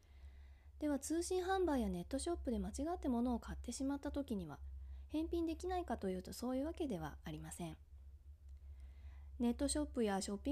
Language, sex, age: Japanese, female, 20-39